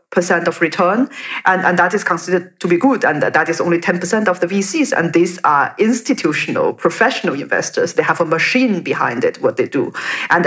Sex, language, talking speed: female, English, 205 wpm